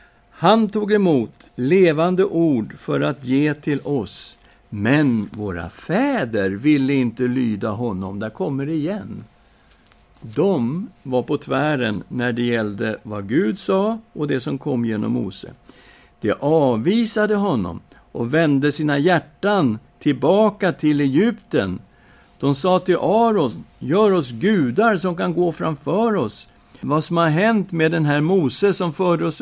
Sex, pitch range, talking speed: male, 120-175 Hz, 140 wpm